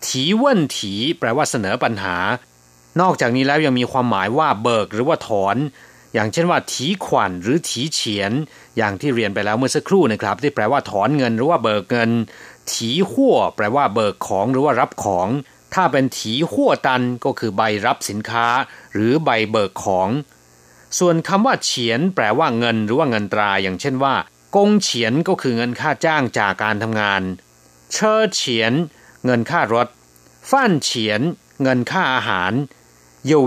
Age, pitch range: 30-49, 100-140 Hz